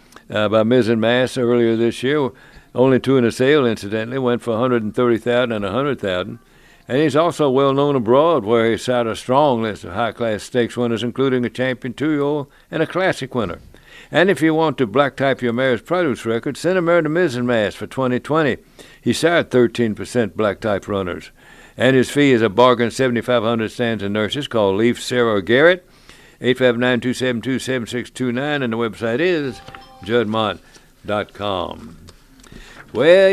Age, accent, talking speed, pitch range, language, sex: 60-79, American, 175 wpm, 115-140 Hz, English, male